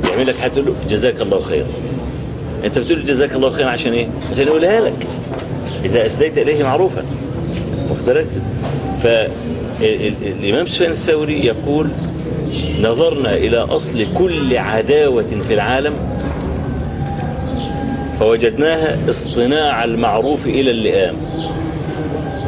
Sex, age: male, 40-59